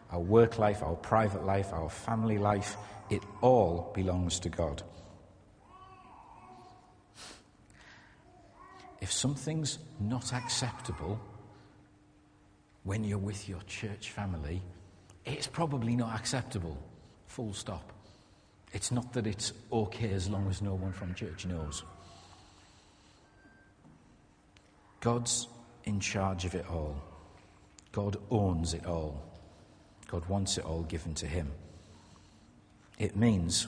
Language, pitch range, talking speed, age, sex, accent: English, 90-110 Hz, 110 wpm, 50-69, male, British